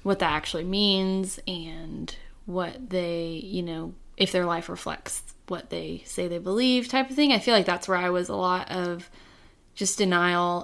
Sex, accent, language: female, American, English